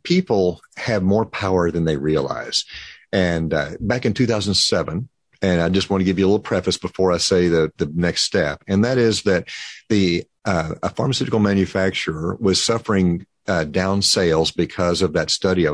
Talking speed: 185 wpm